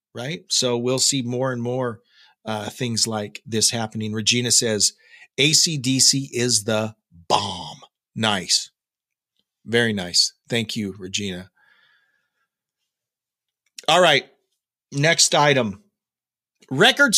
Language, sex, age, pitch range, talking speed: English, male, 40-59, 120-160 Hz, 100 wpm